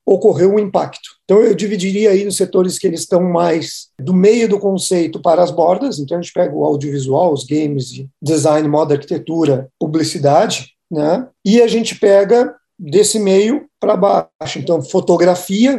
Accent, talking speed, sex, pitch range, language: Brazilian, 165 wpm, male, 155-205 Hz, Portuguese